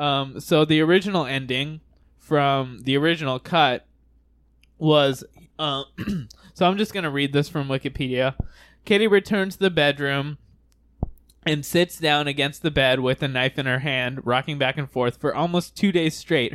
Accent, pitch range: American, 130-155 Hz